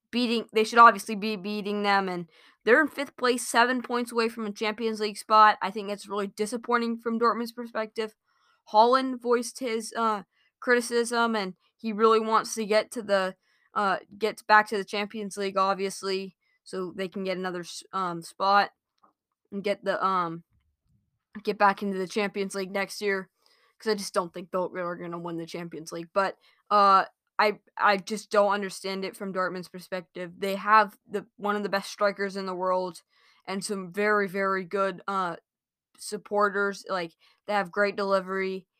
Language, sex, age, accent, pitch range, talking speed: English, female, 20-39, American, 190-225 Hz, 175 wpm